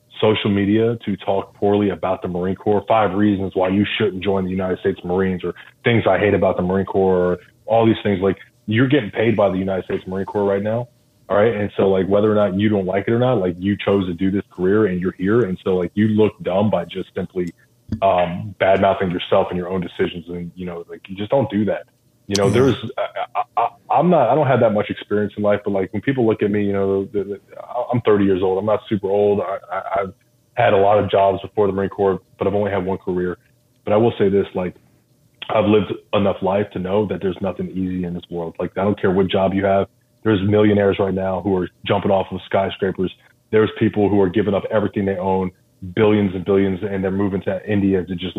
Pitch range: 95-105 Hz